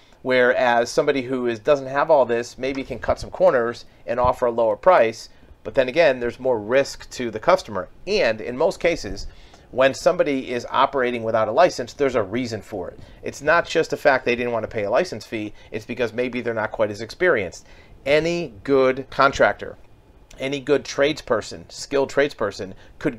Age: 40-59